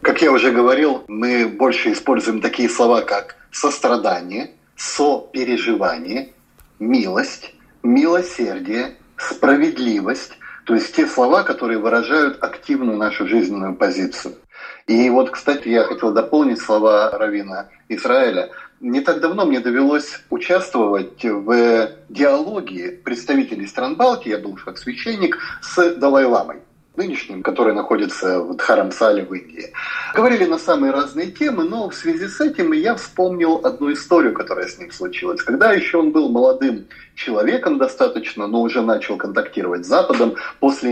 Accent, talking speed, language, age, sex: native, 135 wpm, Russian, 30-49, male